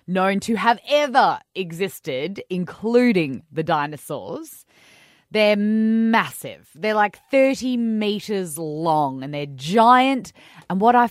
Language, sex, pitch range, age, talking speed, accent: English, female, 170-235 Hz, 20-39, 115 wpm, Australian